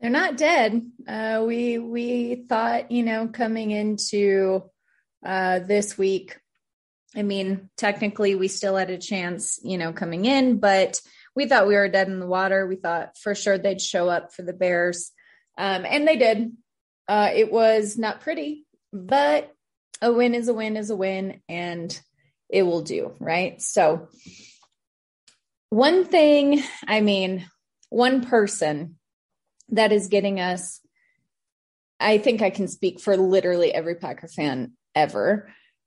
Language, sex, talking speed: English, female, 150 wpm